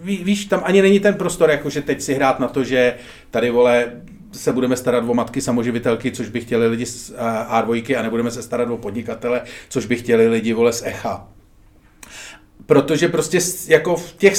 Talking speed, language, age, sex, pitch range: 195 wpm, Czech, 40-59, male, 120-165 Hz